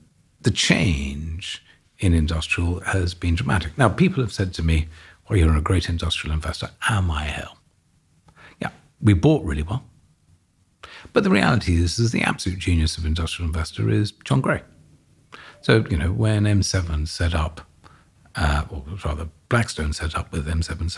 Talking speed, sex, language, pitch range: 160 wpm, male, English, 80-100 Hz